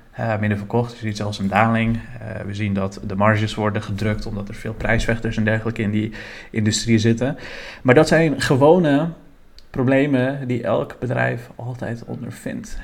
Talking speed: 170 wpm